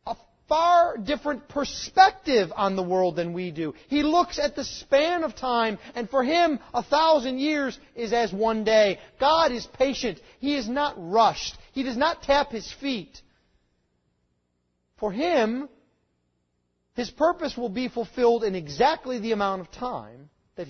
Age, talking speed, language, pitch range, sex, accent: 40-59, 155 wpm, English, 160-275 Hz, male, American